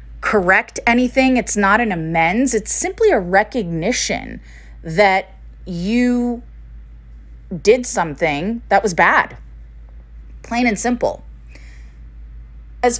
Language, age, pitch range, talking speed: English, 20-39, 160-225 Hz, 95 wpm